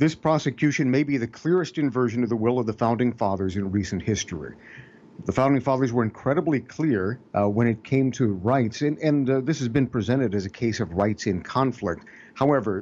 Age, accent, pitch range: 50-69, American, 100-125 Hz